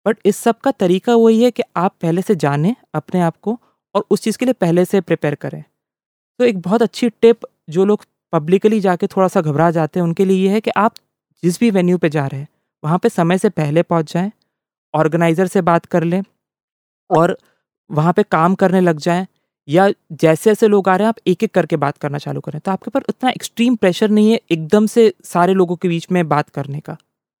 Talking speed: 140 wpm